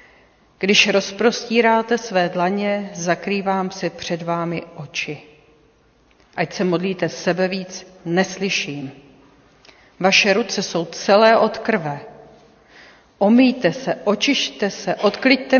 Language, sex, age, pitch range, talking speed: Czech, female, 40-59, 170-205 Hz, 95 wpm